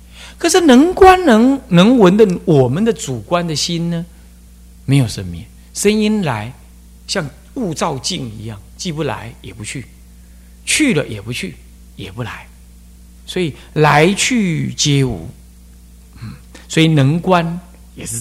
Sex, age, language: male, 50-69, Chinese